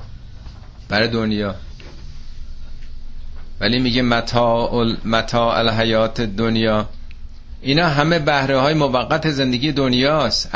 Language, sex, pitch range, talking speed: Persian, male, 80-135 Hz, 85 wpm